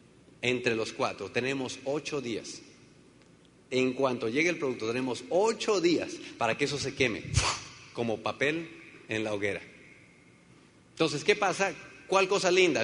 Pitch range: 145-205 Hz